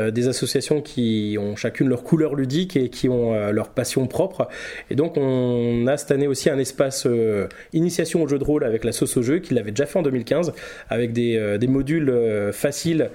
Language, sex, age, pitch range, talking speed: French, male, 20-39, 115-145 Hz, 200 wpm